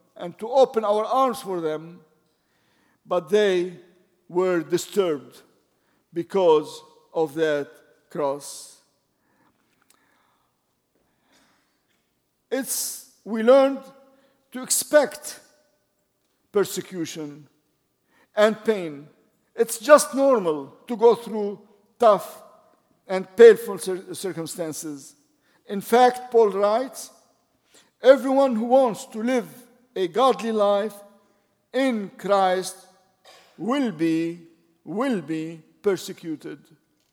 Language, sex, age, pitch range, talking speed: English, male, 50-69, 175-240 Hz, 85 wpm